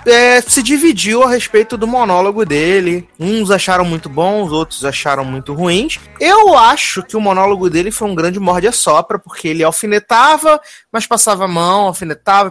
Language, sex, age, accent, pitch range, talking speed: Portuguese, male, 20-39, Brazilian, 150-200 Hz, 175 wpm